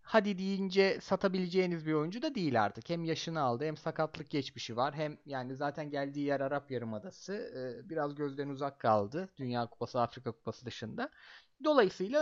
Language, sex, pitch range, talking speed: Turkish, male, 155-235 Hz, 155 wpm